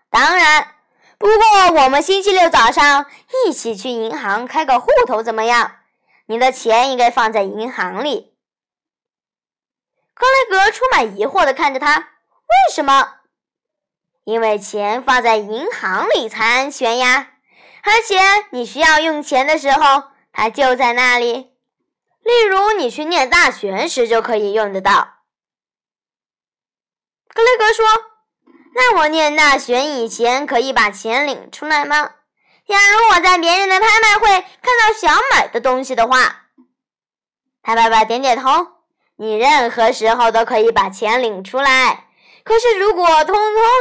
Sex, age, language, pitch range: male, 10-29, Chinese, 235-390 Hz